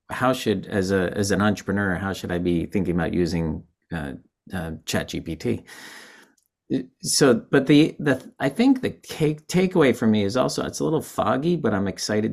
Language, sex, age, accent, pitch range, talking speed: English, male, 30-49, American, 85-105 Hz, 185 wpm